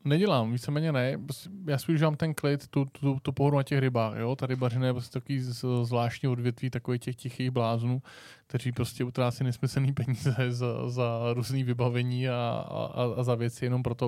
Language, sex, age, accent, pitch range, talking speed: Czech, male, 20-39, native, 120-130 Hz, 190 wpm